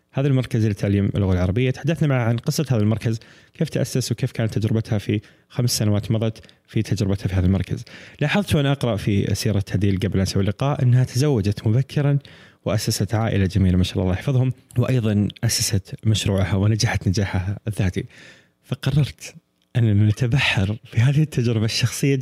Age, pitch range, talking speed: 20-39, 100-130 Hz, 160 wpm